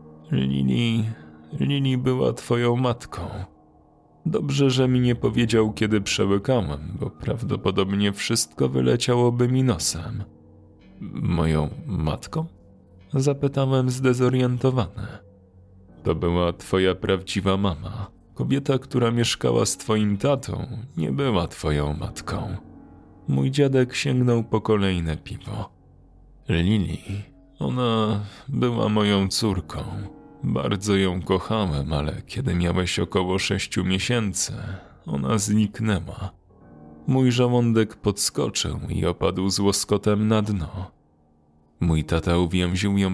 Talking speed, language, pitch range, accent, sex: 100 wpm, Polish, 90-120 Hz, native, male